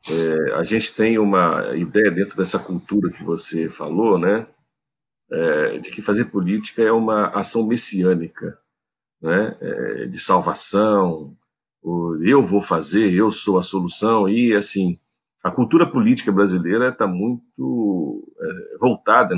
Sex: male